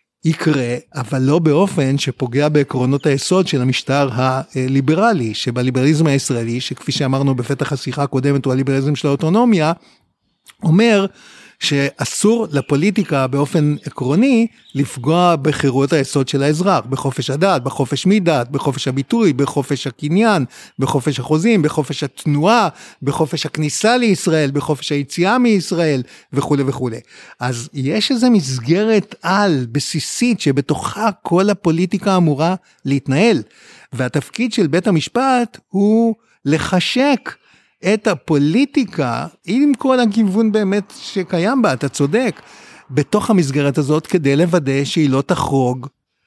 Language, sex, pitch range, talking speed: Hebrew, male, 140-195 Hz, 110 wpm